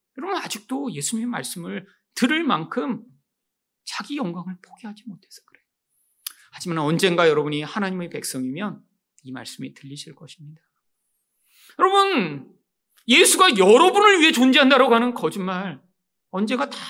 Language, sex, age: Korean, male, 40-59